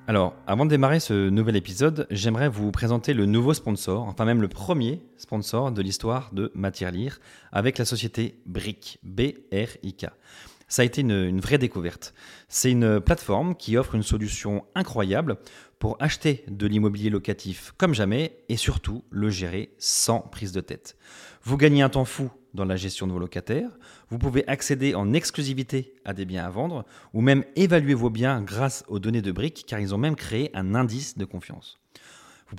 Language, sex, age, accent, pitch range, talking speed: French, male, 30-49, French, 100-135 Hz, 180 wpm